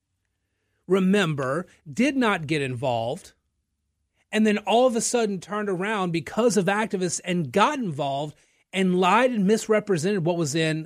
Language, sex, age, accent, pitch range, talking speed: English, male, 30-49, American, 140-195 Hz, 145 wpm